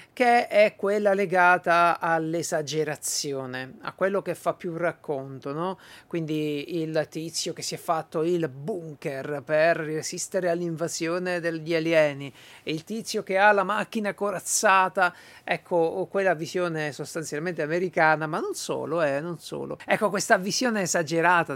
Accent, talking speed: native, 130 wpm